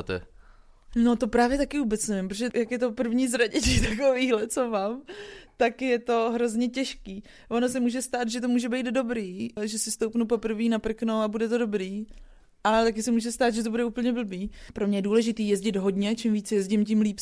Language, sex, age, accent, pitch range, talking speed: Czech, female, 20-39, native, 210-240 Hz, 205 wpm